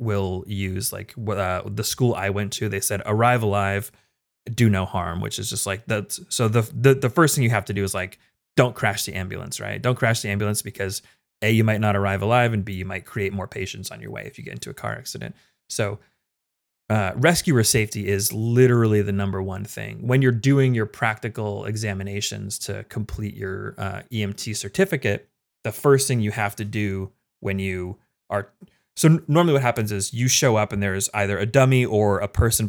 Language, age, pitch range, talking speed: English, 30-49, 100-125 Hz, 210 wpm